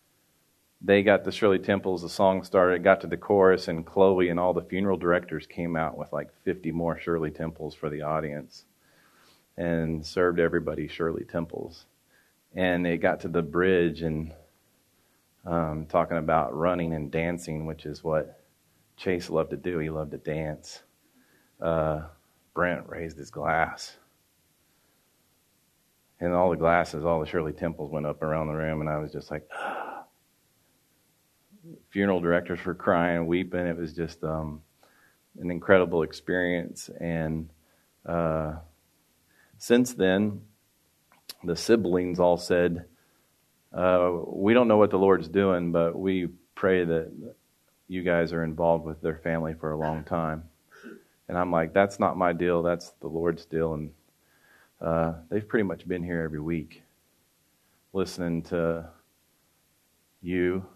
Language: English